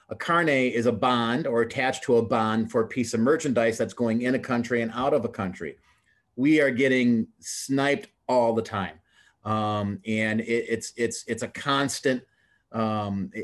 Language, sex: English, male